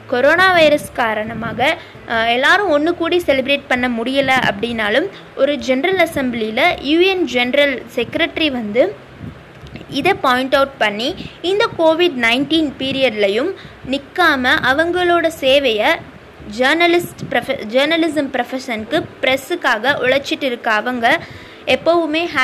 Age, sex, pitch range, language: 20-39, female, 250-330 Hz, Tamil